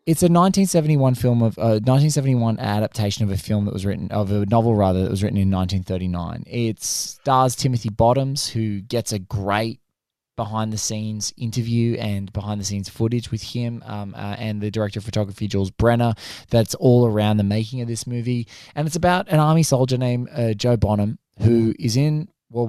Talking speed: 185 wpm